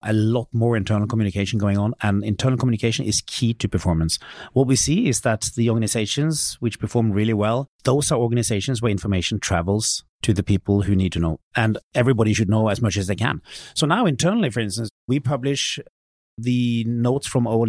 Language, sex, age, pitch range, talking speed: English, male, 30-49, 105-130 Hz, 195 wpm